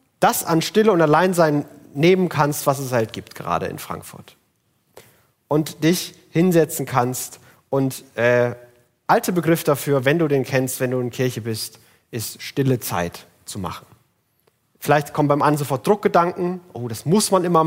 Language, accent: German, German